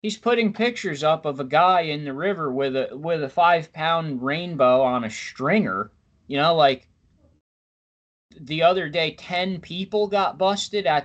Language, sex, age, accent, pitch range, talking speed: English, male, 30-49, American, 125-185 Hz, 165 wpm